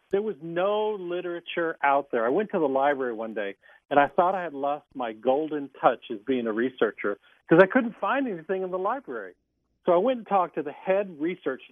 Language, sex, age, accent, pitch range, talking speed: English, male, 50-69, American, 130-205 Hz, 220 wpm